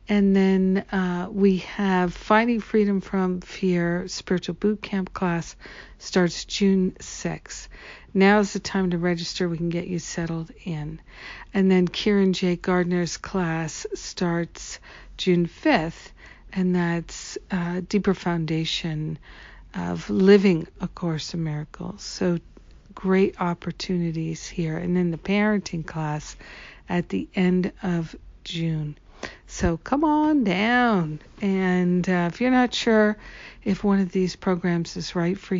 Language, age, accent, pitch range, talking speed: English, 60-79, American, 165-195 Hz, 135 wpm